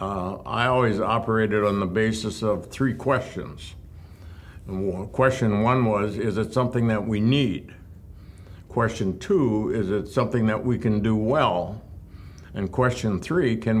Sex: male